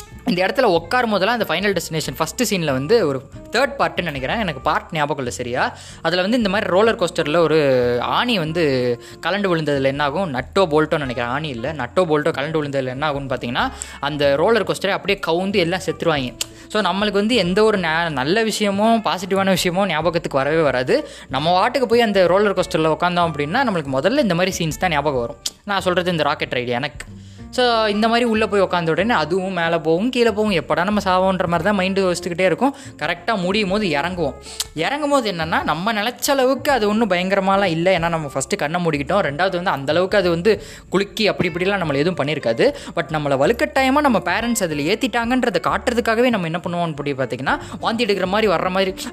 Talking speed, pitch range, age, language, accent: 180 wpm, 155-210 Hz, 20-39, Tamil, native